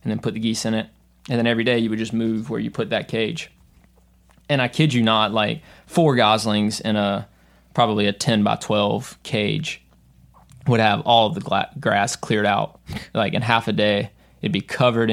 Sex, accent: male, American